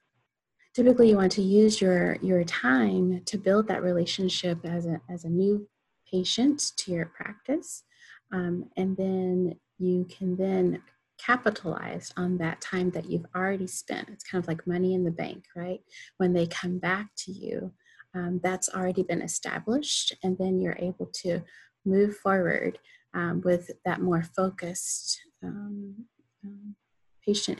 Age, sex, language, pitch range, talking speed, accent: 30-49, female, English, 175-205 Hz, 145 wpm, American